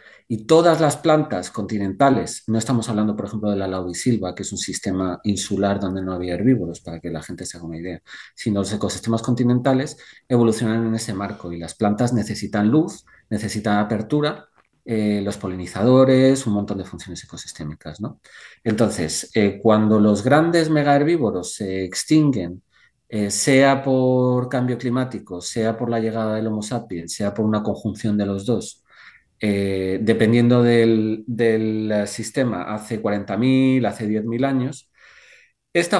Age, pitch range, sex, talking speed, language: 40-59, 100-125 Hz, male, 155 wpm, Spanish